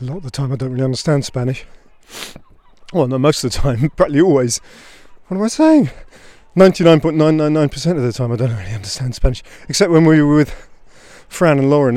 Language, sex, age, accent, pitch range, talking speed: English, male, 30-49, British, 125-155 Hz, 195 wpm